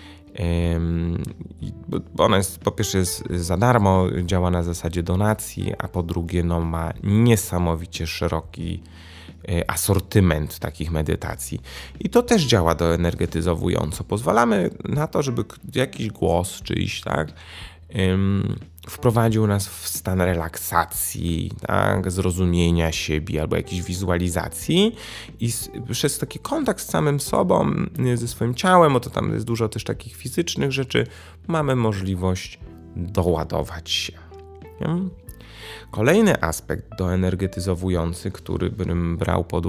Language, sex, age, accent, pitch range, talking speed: Polish, male, 30-49, native, 85-110 Hz, 120 wpm